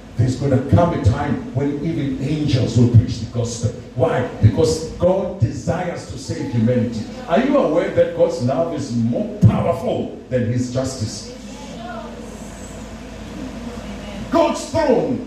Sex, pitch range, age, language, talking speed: male, 115-160 Hz, 50-69, English, 135 wpm